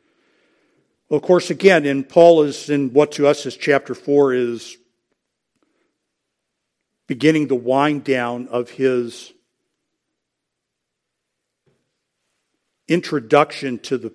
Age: 50-69